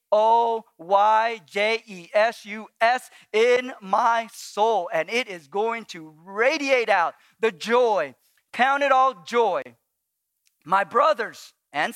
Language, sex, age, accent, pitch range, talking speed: English, male, 40-59, American, 200-250 Hz, 100 wpm